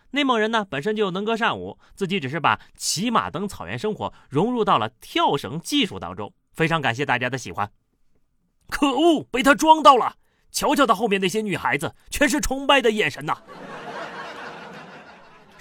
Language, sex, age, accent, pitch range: Chinese, male, 30-49, native, 140-230 Hz